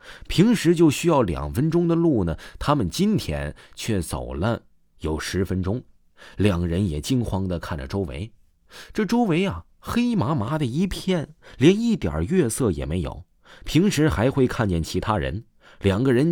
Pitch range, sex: 80-125 Hz, male